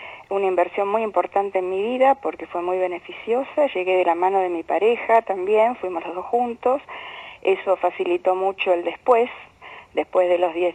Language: Spanish